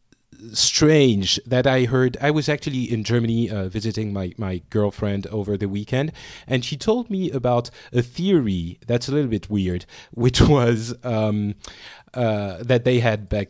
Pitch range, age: 105-135 Hz, 30-49